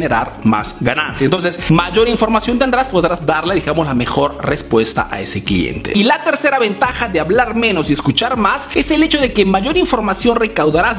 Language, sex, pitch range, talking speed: Spanish, male, 170-245 Hz, 180 wpm